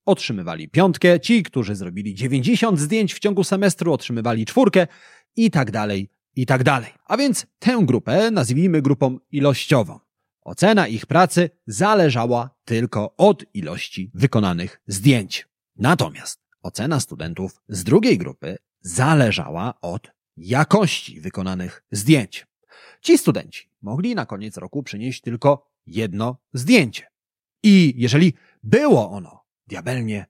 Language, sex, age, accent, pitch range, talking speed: Polish, male, 30-49, native, 100-160 Hz, 120 wpm